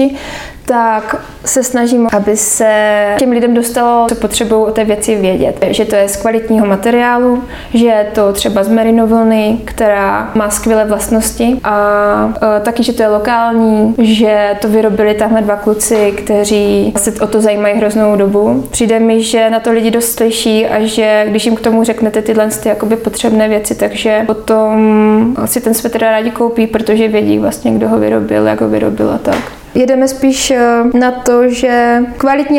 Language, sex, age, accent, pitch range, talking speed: Czech, female, 20-39, native, 220-255 Hz, 170 wpm